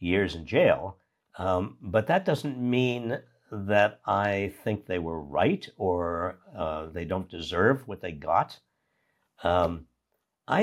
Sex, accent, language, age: male, American, English, 60-79